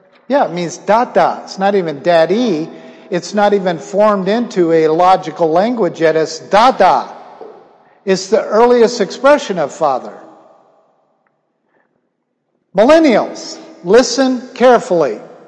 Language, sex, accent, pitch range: English, male, American, 180-265 Hz